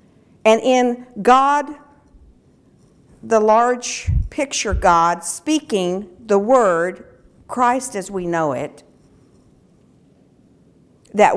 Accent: American